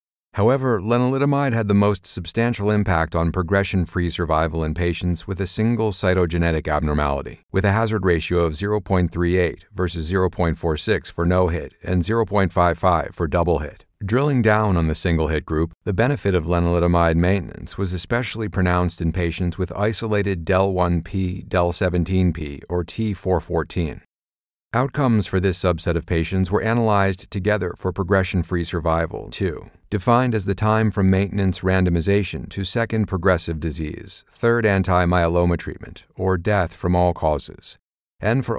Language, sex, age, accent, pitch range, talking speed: English, male, 50-69, American, 85-105 Hz, 135 wpm